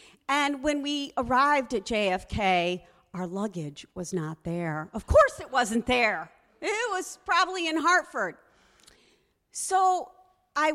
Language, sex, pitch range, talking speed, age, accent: English, female, 180-265 Hz, 130 wpm, 40-59, American